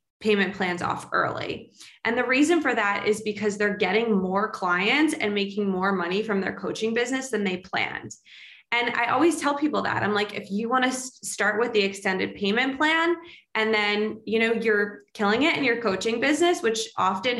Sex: female